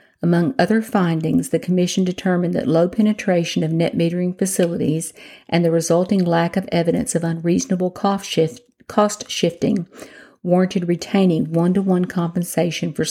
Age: 50-69